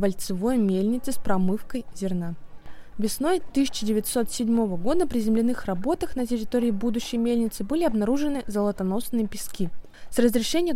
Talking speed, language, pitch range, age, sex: 110 wpm, Russian, 195-250 Hz, 20-39, female